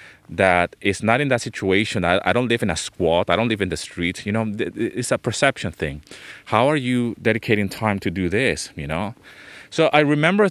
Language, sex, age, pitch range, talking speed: English, male, 30-49, 95-130 Hz, 225 wpm